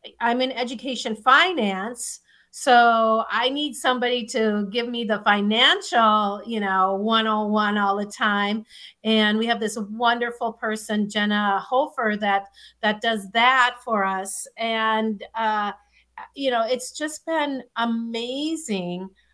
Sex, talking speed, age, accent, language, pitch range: female, 125 wpm, 40-59, American, English, 210-245 Hz